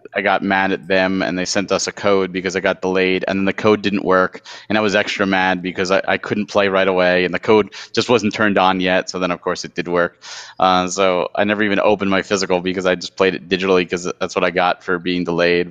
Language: English